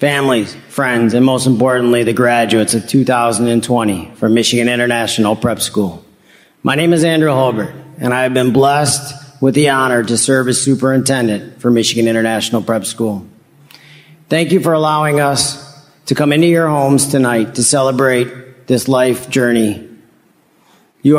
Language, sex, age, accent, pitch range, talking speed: English, male, 40-59, American, 120-150 Hz, 150 wpm